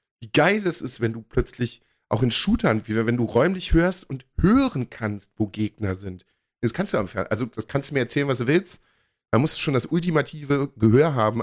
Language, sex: German, male